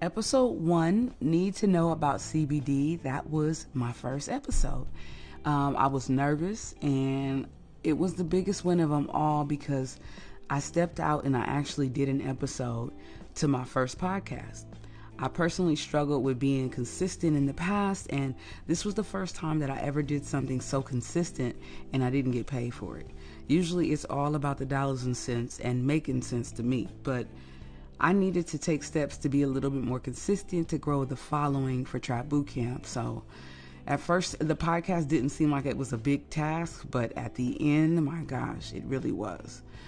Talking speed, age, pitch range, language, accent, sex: 185 wpm, 30-49, 130-165 Hz, English, American, female